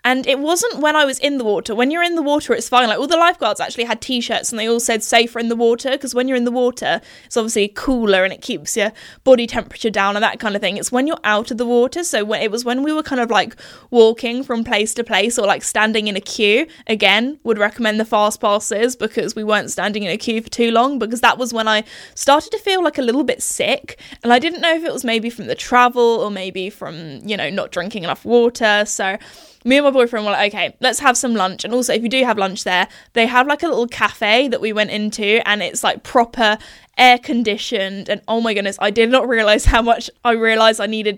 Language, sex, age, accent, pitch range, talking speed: English, female, 10-29, British, 210-250 Hz, 260 wpm